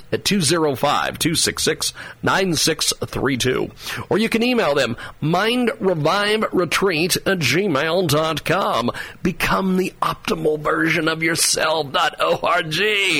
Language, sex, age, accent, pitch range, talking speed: English, male, 40-59, American, 135-185 Hz, 75 wpm